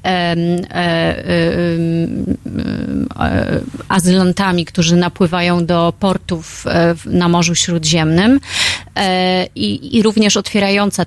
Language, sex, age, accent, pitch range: Polish, female, 30-49, native, 175-205 Hz